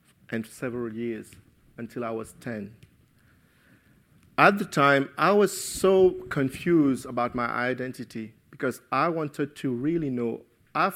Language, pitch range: English, 120-155 Hz